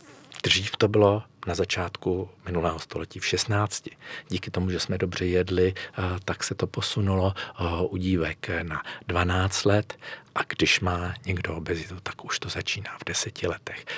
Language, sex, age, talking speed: Czech, male, 50-69, 155 wpm